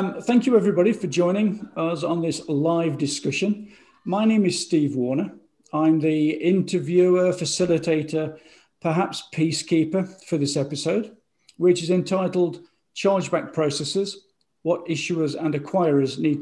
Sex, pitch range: male, 150-180 Hz